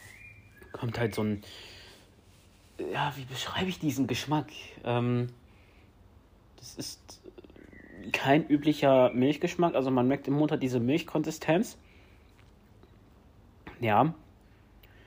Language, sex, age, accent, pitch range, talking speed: German, male, 30-49, German, 100-130 Hz, 100 wpm